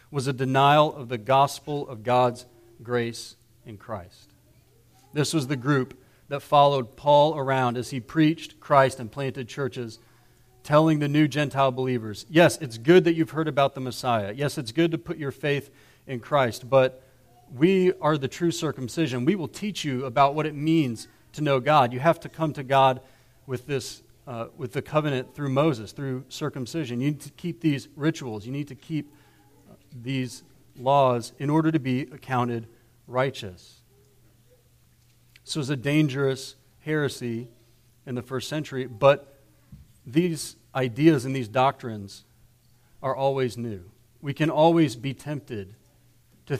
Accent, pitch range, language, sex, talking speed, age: American, 120-150 Hz, English, male, 160 wpm, 40-59